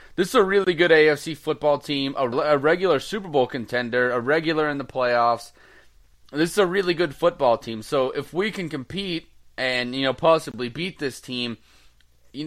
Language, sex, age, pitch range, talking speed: English, male, 20-39, 125-160 Hz, 185 wpm